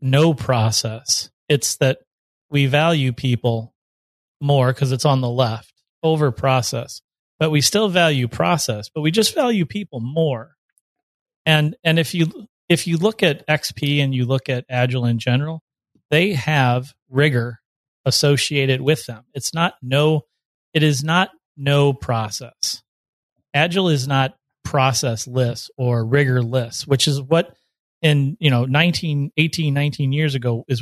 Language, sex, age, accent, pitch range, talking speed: English, male, 30-49, American, 120-150 Hz, 150 wpm